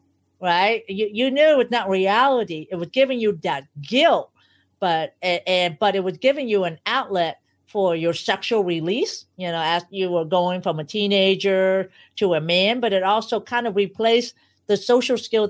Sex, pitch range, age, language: female, 165-205 Hz, 50-69, English